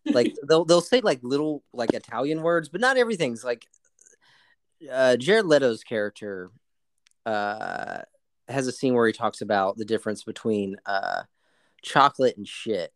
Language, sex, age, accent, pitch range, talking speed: English, male, 30-49, American, 105-160 Hz, 150 wpm